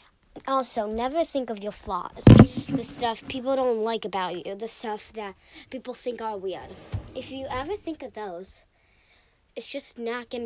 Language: English